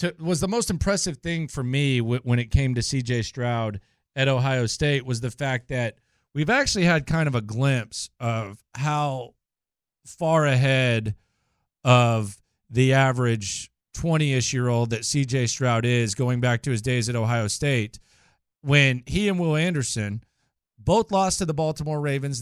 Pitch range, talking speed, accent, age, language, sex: 120-160 Hz, 165 wpm, American, 40-59, English, male